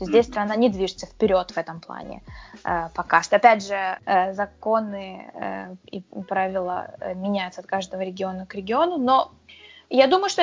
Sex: female